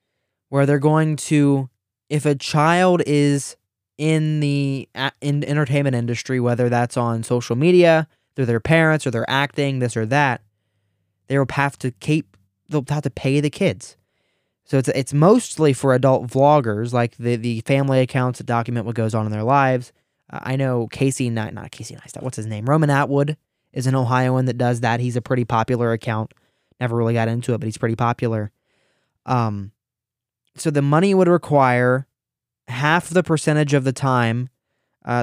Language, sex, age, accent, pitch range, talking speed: English, male, 20-39, American, 120-145 Hz, 180 wpm